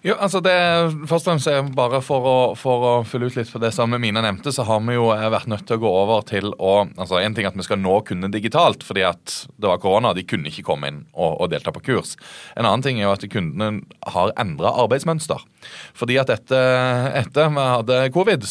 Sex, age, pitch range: male, 30-49, 100-135 Hz